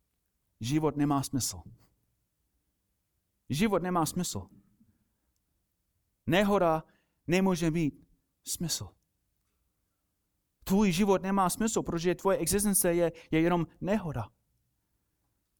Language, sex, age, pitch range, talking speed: Czech, male, 30-49, 105-165 Hz, 80 wpm